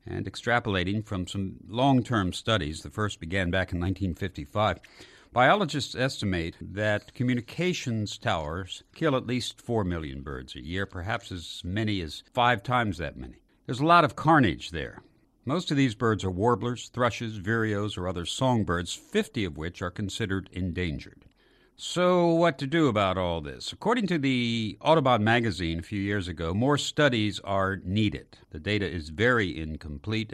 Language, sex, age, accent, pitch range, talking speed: English, male, 60-79, American, 90-120 Hz, 160 wpm